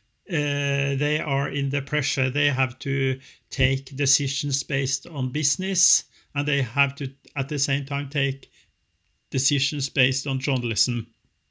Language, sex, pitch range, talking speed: English, male, 130-145 Hz, 140 wpm